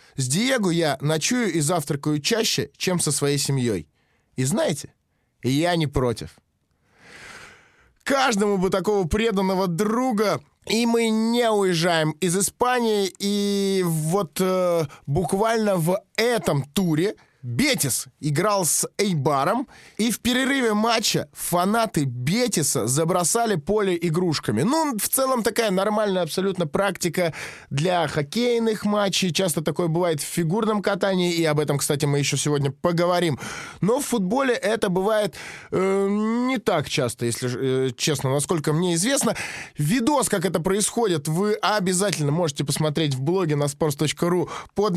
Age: 20-39